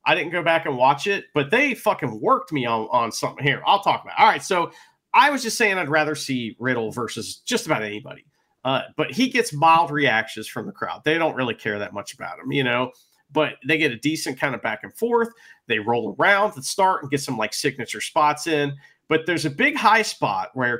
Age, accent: 40-59, American